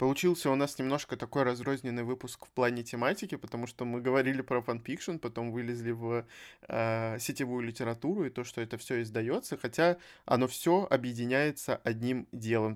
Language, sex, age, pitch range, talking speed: Russian, male, 20-39, 115-140 Hz, 160 wpm